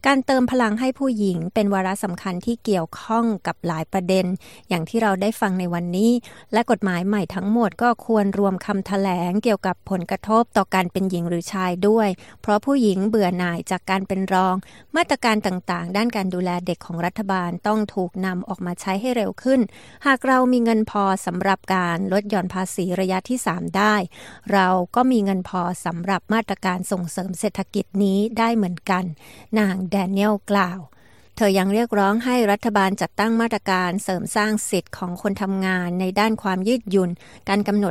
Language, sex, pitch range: Thai, female, 185-215 Hz